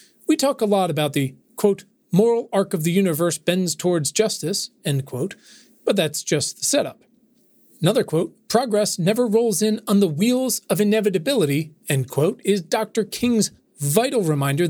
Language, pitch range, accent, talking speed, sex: English, 150-210 Hz, American, 165 wpm, male